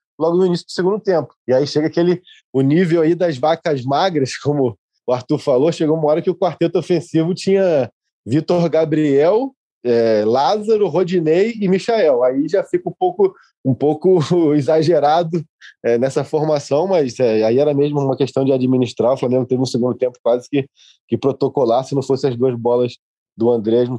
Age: 20-39